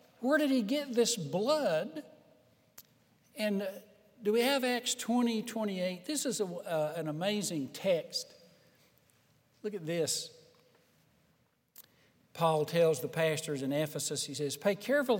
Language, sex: English, male